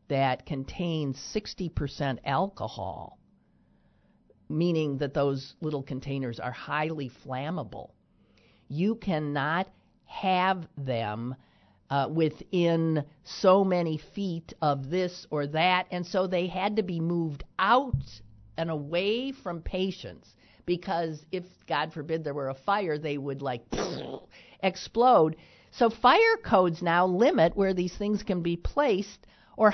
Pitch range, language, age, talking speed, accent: 125-185 Hz, English, 50-69, 125 wpm, American